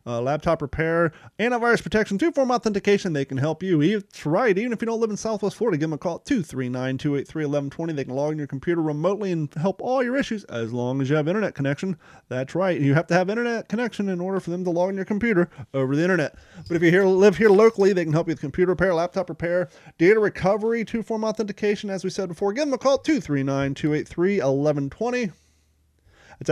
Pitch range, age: 140-195 Hz, 30-49